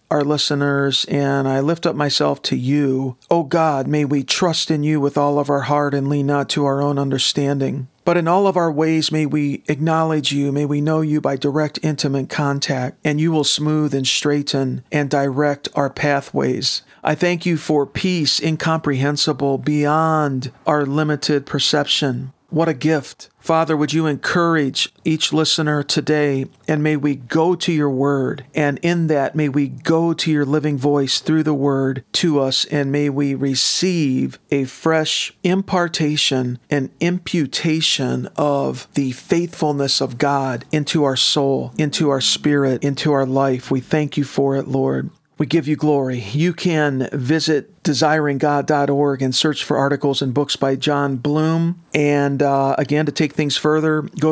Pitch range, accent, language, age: 140-155 Hz, American, English, 50-69